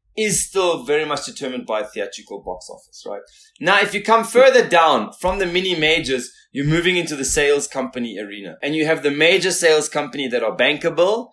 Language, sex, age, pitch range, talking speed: English, male, 20-39, 135-180 Hz, 195 wpm